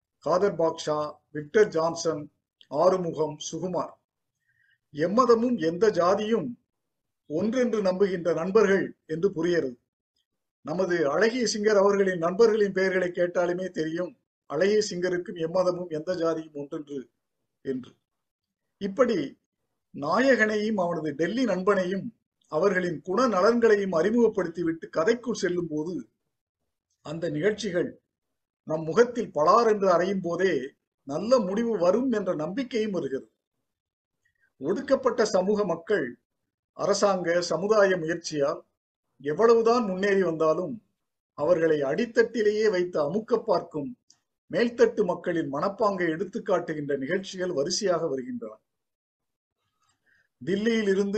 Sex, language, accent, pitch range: male, Tamil, native, 160-210 Hz